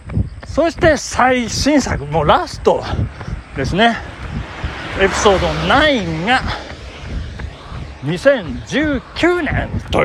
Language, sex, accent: Japanese, male, native